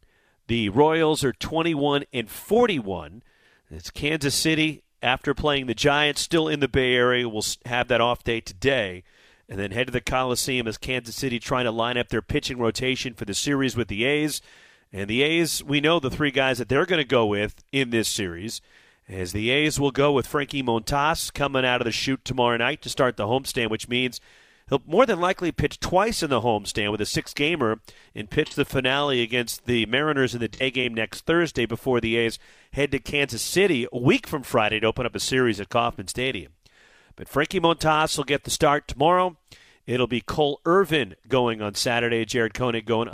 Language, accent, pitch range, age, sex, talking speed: English, American, 115-145 Hz, 40-59, male, 205 wpm